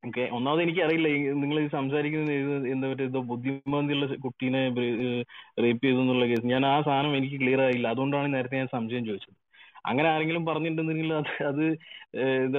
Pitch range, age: 130-155 Hz, 30-49